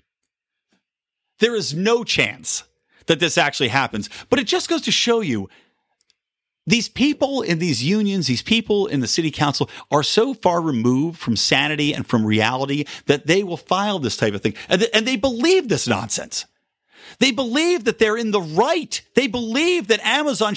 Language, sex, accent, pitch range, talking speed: English, male, American, 145-235 Hz, 175 wpm